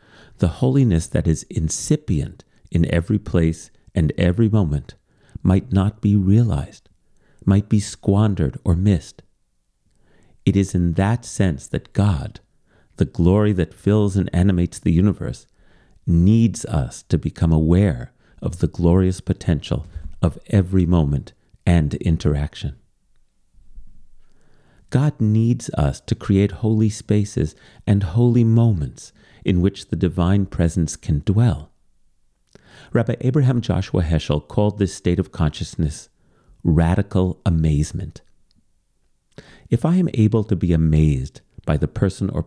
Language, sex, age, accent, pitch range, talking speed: English, male, 40-59, American, 80-100 Hz, 125 wpm